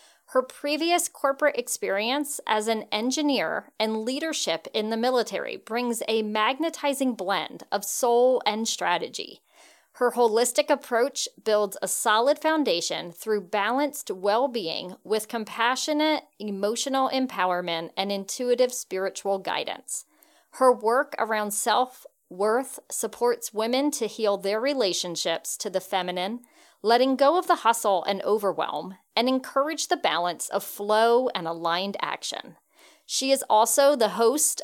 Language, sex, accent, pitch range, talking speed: English, female, American, 210-280 Hz, 125 wpm